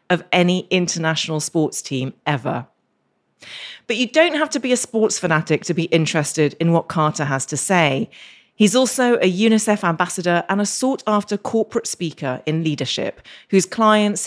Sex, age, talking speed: female, 40-59, 165 wpm